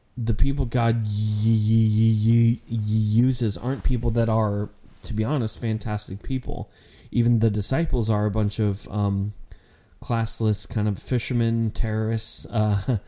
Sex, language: male, English